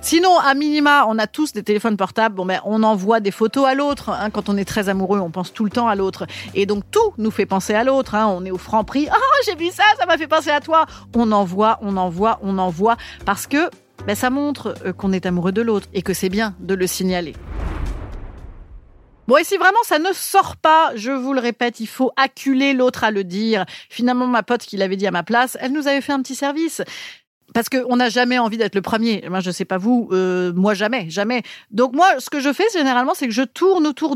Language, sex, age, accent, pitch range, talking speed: French, female, 30-49, French, 205-285 Hz, 255 wpm